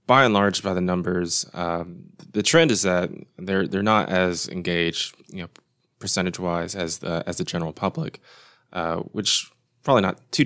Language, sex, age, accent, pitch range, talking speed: English, male, 20-39, American, 85-100 Hz, 180 wpm